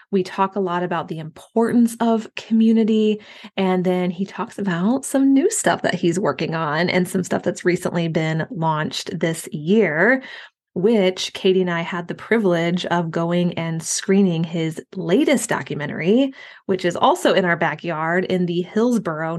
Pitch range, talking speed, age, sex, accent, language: 170-200 Hz, 165 wpm, 20-39, female, American, English